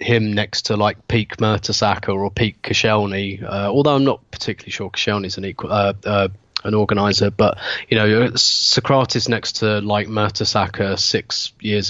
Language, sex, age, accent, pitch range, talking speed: English, male, 20-39, British, 100-115 Hz, 160 wpm